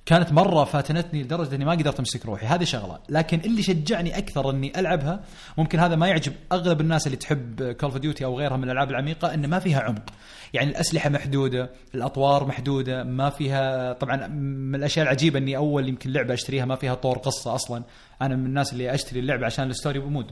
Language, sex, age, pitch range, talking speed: Arabic, male, 30-49, 130-155 Hz, 200 wpm